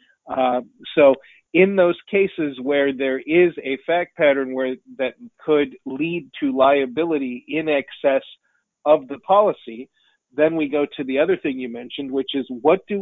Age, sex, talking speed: 40-59, male, 160 wpm